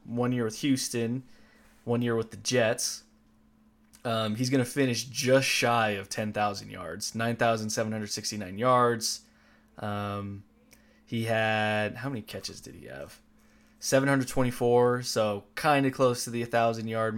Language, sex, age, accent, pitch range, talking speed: English, male, 20-39, American, 110-135 Hz, 135 wpm